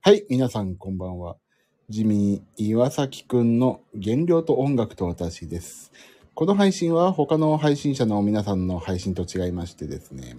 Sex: male